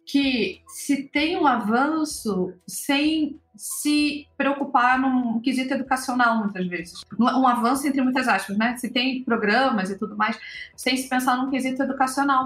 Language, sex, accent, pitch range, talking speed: English, female, Brazilian, 205-260 Hz, 150 wpm